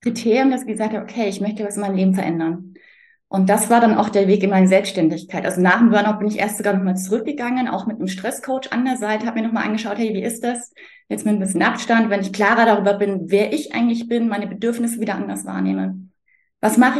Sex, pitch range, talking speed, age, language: female, 190-225 Hz, 250 wpm, 20-39, German